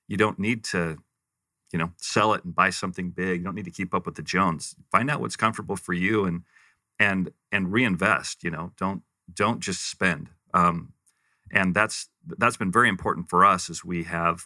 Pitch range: 85-95 Hz